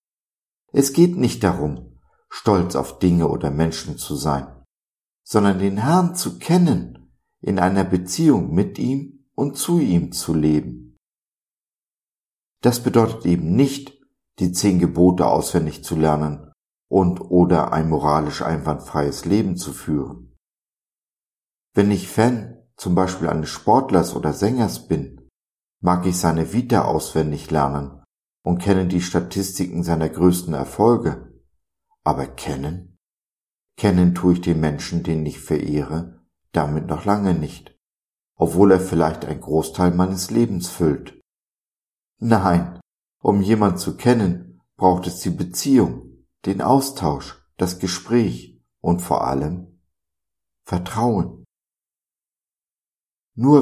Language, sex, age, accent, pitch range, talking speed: German, male, 50-69, German, 75-100 Hz, 120 wpm